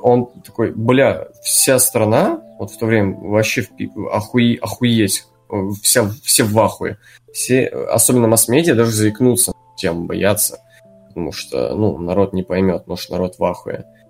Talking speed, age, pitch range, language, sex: 145 wpm, 20-39, 100-125 Hz, Russian, male